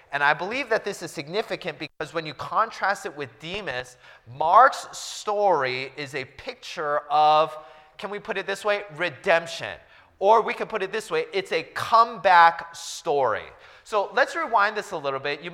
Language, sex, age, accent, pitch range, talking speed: English, male, 30-49, American, 145-200 Hz, 180 wpm